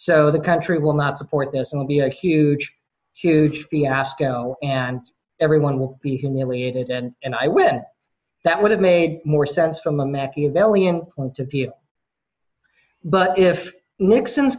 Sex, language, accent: male, English, American